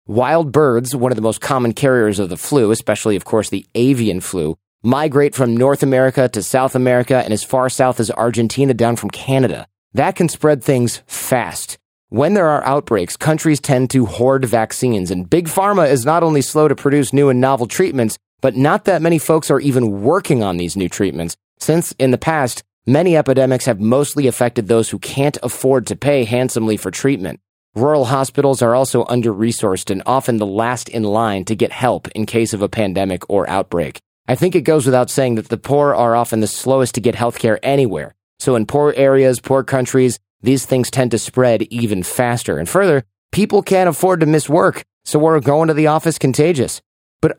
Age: 30-49